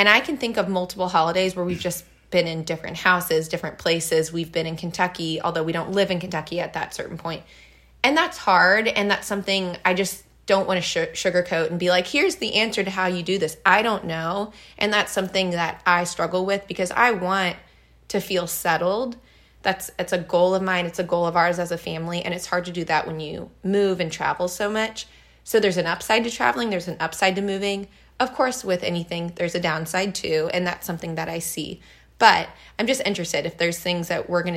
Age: 20-39